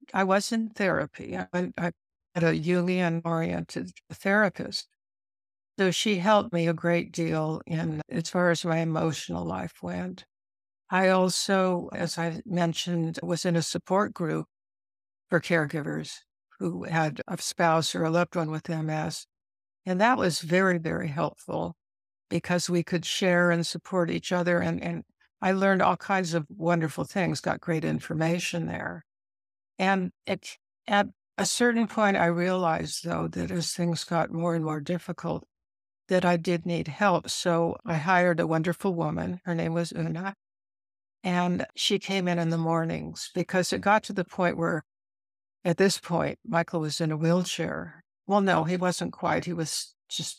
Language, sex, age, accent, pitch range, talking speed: English, female, 60-79, American, 160-185 Hz, 160 wpm